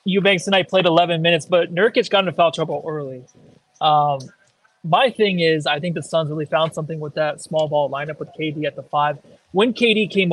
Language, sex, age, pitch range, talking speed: English, male, 20-39, 155-180 Hz, 210 wpm